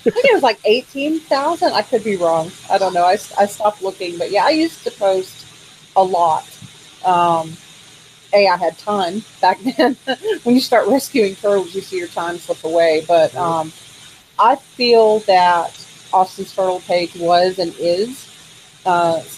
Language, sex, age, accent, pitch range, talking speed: English, female, 40-59, American, 165-200 Hz, 175 wpm